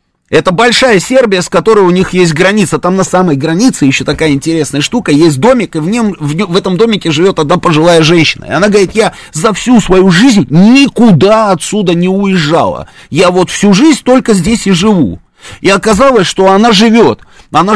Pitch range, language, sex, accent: 165-215 Hz, Russian, male, native